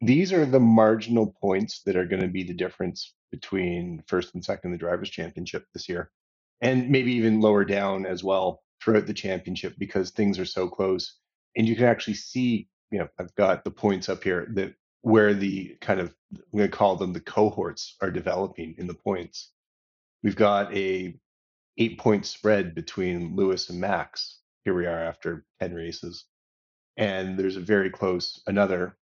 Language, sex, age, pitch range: English, male, 30-49, 90-110 Hz